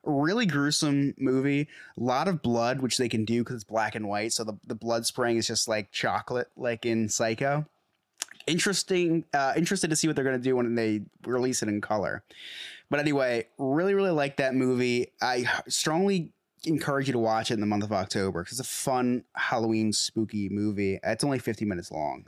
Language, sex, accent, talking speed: English, male, American, 200 wpm